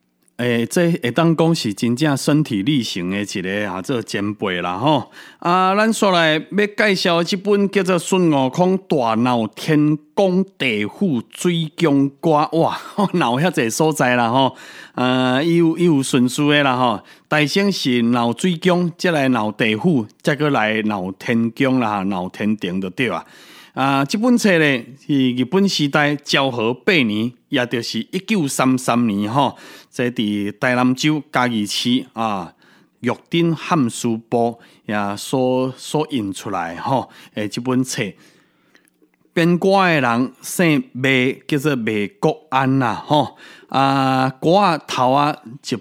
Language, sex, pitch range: Chinese, male, 120-165 Hz